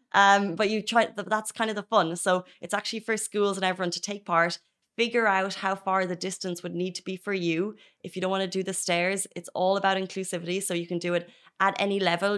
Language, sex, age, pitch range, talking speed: Arabic, female, 20-39, 175-205 Hz, 245 wpm